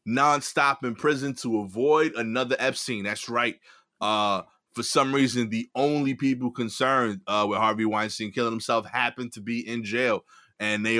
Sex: male